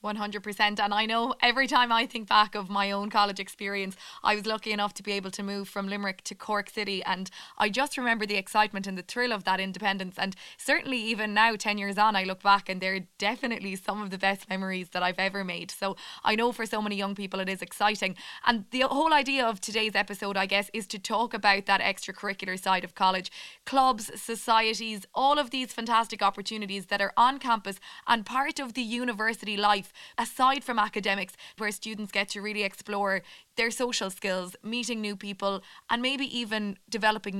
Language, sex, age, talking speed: English, female, 20-39, 200 wpm